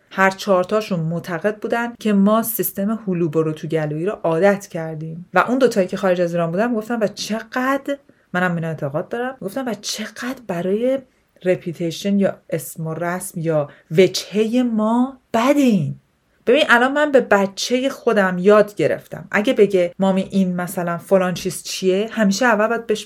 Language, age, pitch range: Persian, 40-59, 180-230 Hz